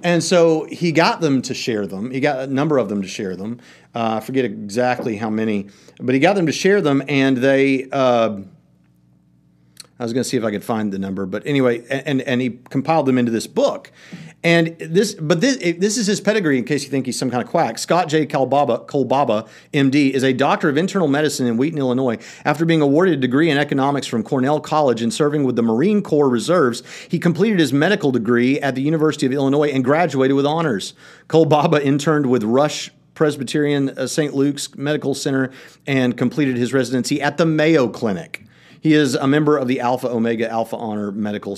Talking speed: 210 wpm